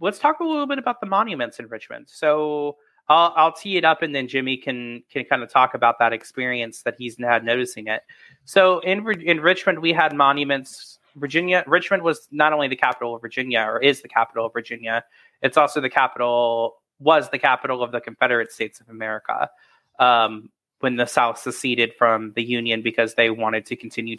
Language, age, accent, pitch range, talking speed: English, 20-39, American, 120-150 Hz, 200 wpm